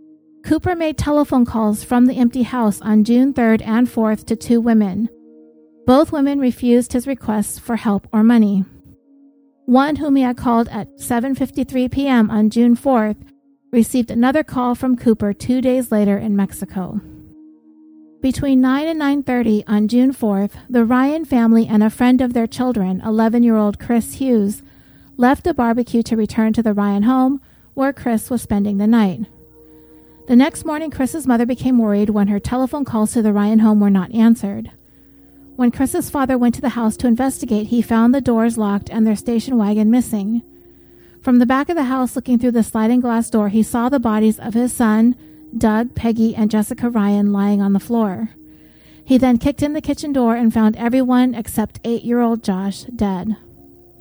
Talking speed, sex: 175 wpm, female